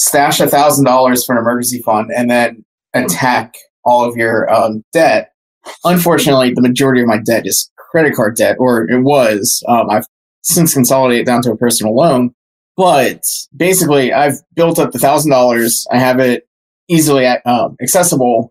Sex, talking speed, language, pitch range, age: male, 170 wpm, English, 120-145 Hz, 20-39